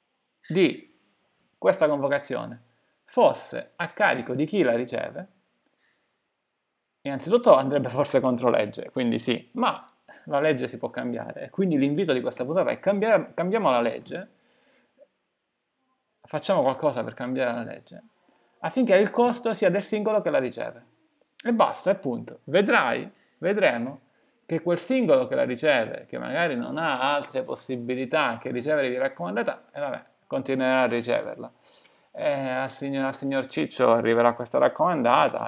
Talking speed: 140 wpm